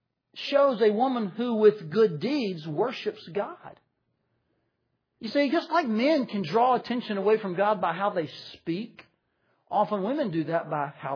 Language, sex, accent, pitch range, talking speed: English, male, American, 160-210 Hz, 160 wpm